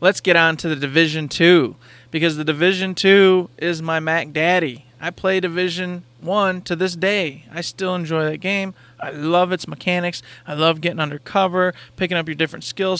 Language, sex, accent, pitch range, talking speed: English, male, American, 150-180 Hz, 185 wpm